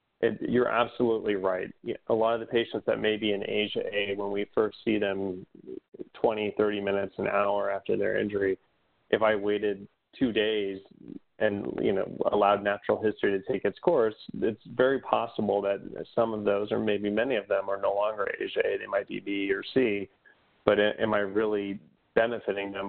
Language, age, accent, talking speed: English, 30-49, American, 185 wpm